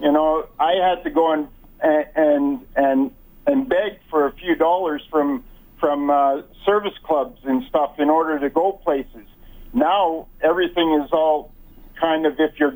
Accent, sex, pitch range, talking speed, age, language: American, male, 140-170 Hz, 165 wpm, 50-69, English